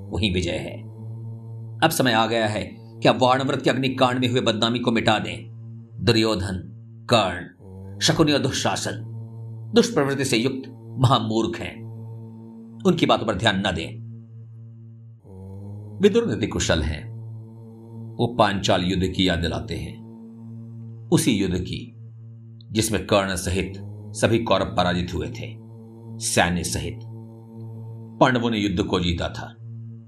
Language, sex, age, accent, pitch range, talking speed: Hindi, male, 50-69, native, 100-115 Hz, 125 wpm